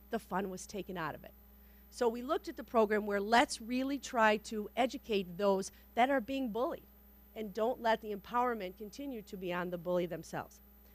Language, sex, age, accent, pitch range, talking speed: English, female, 40-59, American, 185-230 Hz, 195 wpm